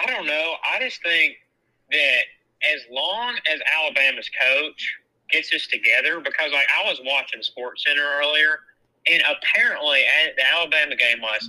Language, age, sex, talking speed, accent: English, 30-49, male, 155 wpm, American